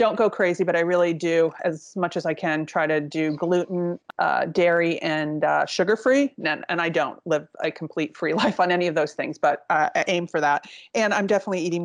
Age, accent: 30-49, American